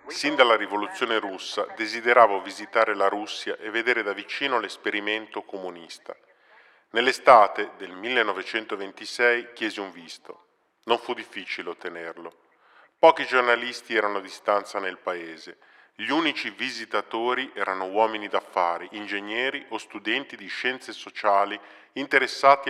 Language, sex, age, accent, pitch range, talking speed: Italian, male, 40-59, native, 100-125 Hz, 115 wpm